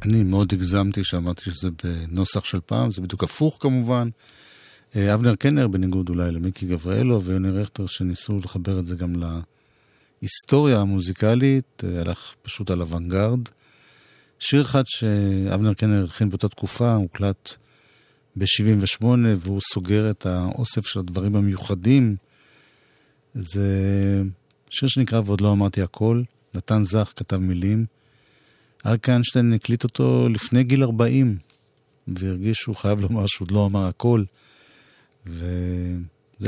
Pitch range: 95-120 Hz